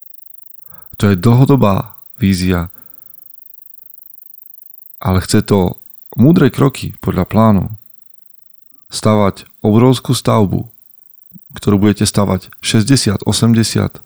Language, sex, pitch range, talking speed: Slovak, male, 95-115 Hz, 80 wpm